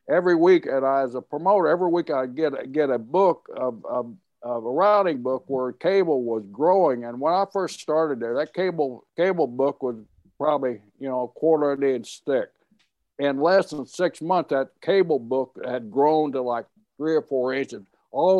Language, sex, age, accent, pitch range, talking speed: English, male, 60-79, American, 130-160 Hz, 200 wpm